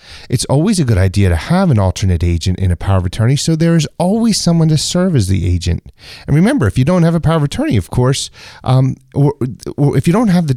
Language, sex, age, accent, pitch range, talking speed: English, male, 30-49, American, 110-150 Hz, 250 wpm